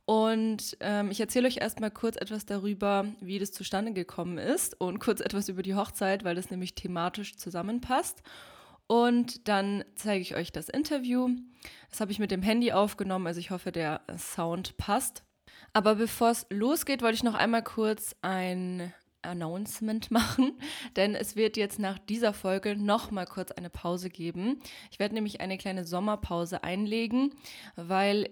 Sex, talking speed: female, 165 wpm